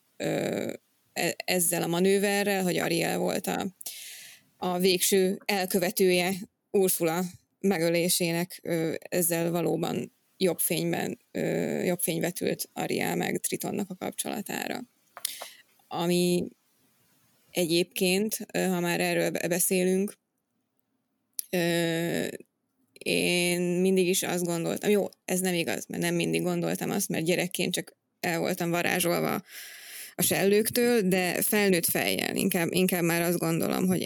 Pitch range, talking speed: 170-190 Hz, 105 wpm